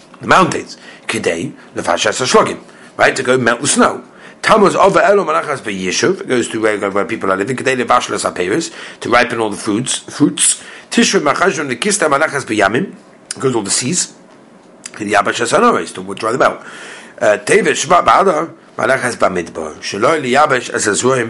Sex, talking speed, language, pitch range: male, 165 wpm, English, 120-150 Hz